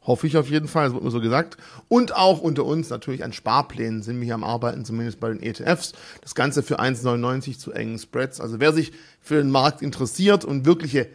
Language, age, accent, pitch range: German, 40-59, German, 130-170 Hz